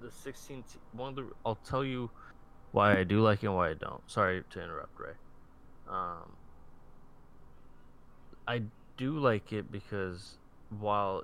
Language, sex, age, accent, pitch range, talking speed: English, male, 20-39, American, 90-110 Hz, 150 wpm